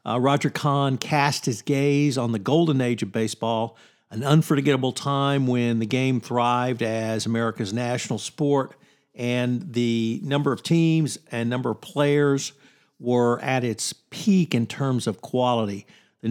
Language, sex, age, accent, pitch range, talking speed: English, male, 50-69, American, 115-135 Hz, 150 wpm